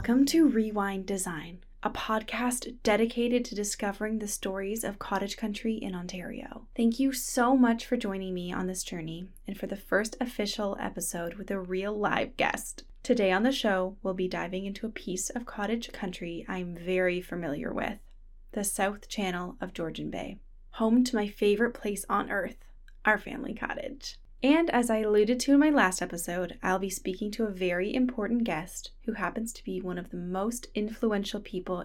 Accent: American